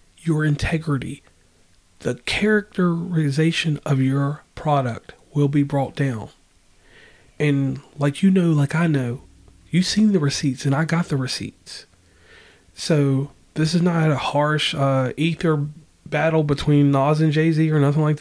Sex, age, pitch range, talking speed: male, 40-59, 125-160 Hz, 140 wpm